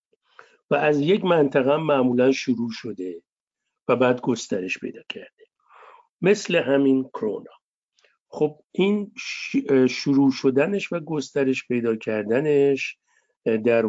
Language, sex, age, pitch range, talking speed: Persian, male, 50-69, 115-145 Hz, 105 wpm